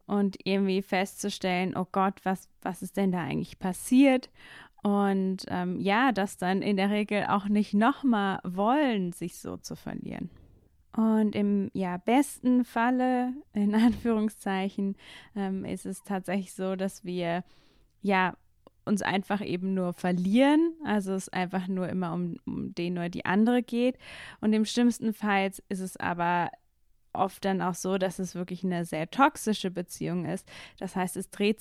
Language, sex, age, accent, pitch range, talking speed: German, female, 20-39, German, 180-215 Hz, 160 wpm